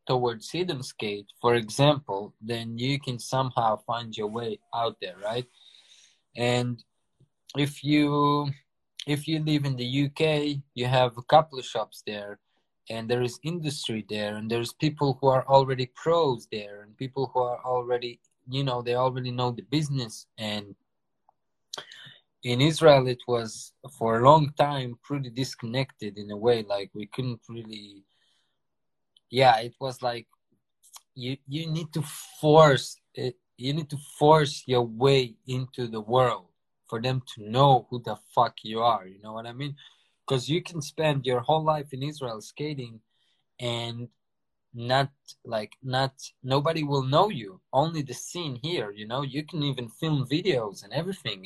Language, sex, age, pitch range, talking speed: English, male, 20-39, 115-145 Hz, 160 wpm